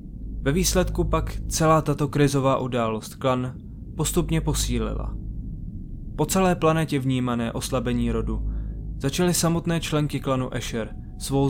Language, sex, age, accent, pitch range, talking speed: Czech, male, 20-39, native, 115-150 Hz, 115 wpm